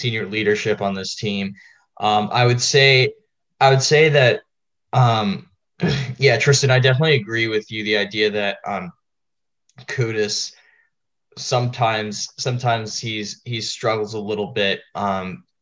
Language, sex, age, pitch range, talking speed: English, male, 10-29, 100-125 Hz, 135 wpm